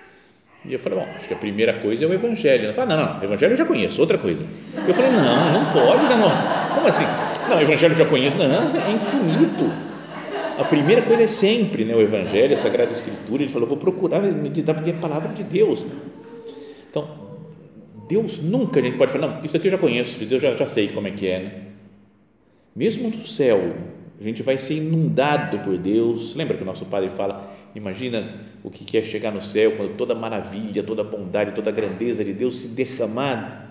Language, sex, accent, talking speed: Portuguese, male, Brazilian, 225 wpm